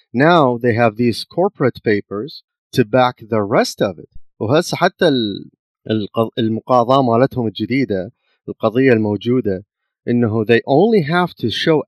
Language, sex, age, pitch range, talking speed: Arabic, male, 30-49, 110-140 Hz, 110 wpm